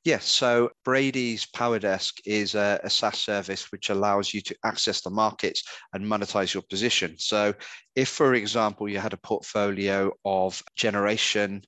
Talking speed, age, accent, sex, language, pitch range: 150 wpm, 30-49, British, male, English, 100-110 Hz